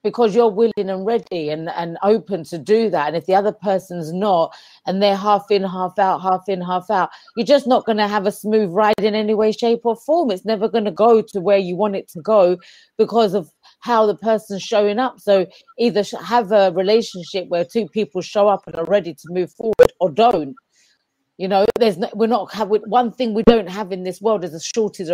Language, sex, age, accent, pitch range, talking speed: English, female, 40-59, British, 195-230 Hz, 230 wpm